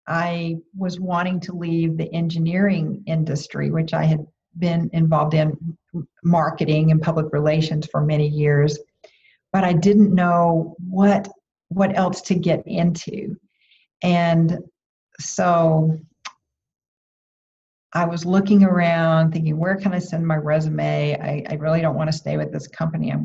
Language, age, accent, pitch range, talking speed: English, 50-69, American, 160-195 Hz, 140 wpm